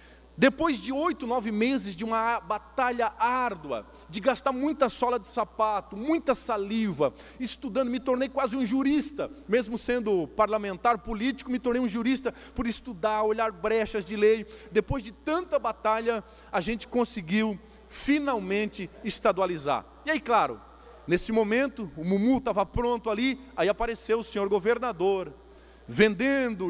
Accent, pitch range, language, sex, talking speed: Brazilian, 215-260 Hz, Portuguese, male, 140 wpm